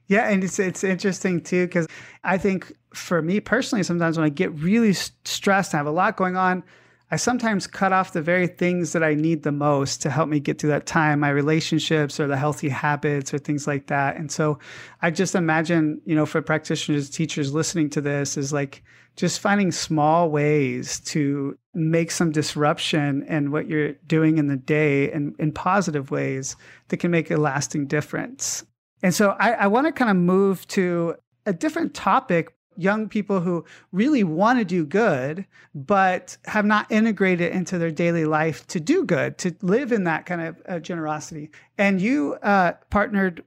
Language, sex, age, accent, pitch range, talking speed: English, male, 30-49, American, 150-195 Hz, 190 wpm